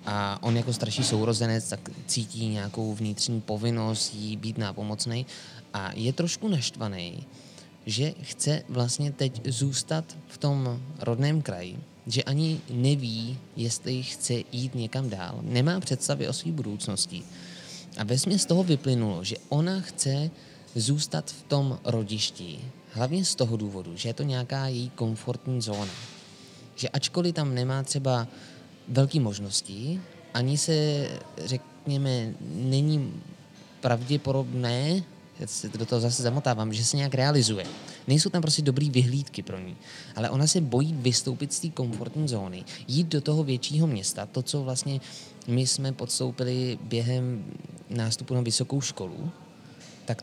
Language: Czech